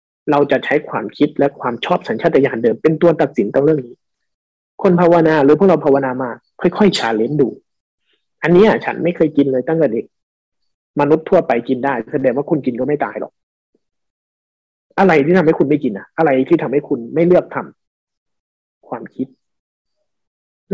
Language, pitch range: Thai, 135-190 Hz